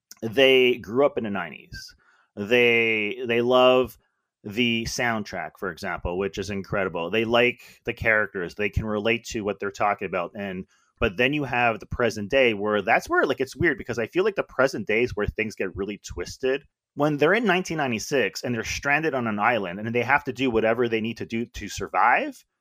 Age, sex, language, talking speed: 30-49, male, English, 200 wpm